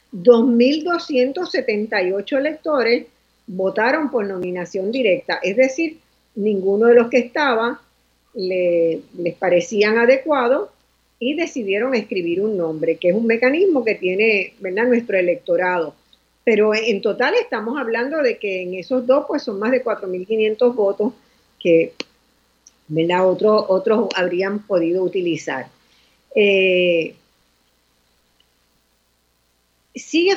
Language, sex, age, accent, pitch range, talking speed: Spanish, female, 50-69, American, 185-255 Hz, 110 wpm